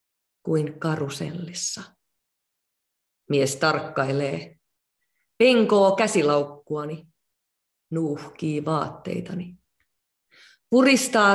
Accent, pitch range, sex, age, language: native, 150-190 Hz, female, 30-49, Finnish